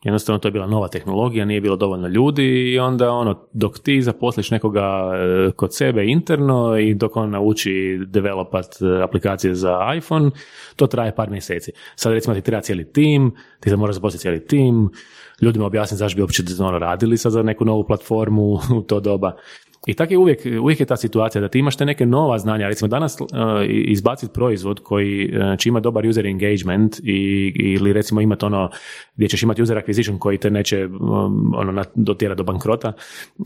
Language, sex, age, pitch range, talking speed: Croatian, male, 30-49, 100-125 Hz, 170 wpm